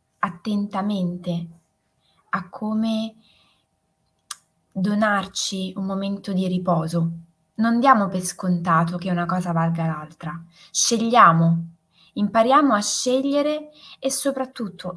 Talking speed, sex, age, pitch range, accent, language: 90 wpm, female, 20-39, 180-230 Hz, native, Italian